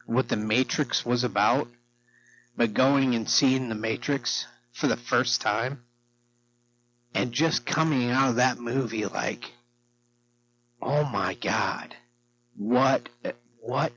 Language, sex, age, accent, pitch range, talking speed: English, male, 50-69, American, 120-130 Hz, 120 wpm